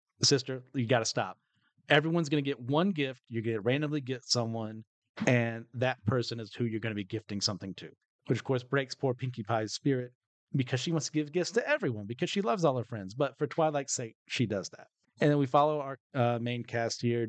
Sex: male